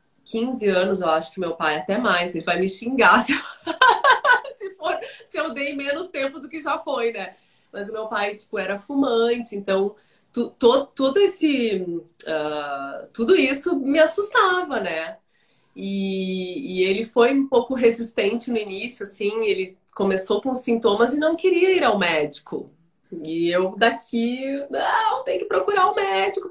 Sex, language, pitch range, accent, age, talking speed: female, Portuguese, 195-245 Hz, Brazilian, 20-39, 150 wpm